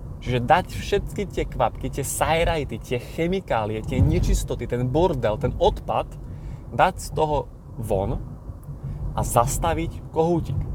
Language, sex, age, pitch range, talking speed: Slovak, male, 20-39, 115-135 Hz, 125 wpm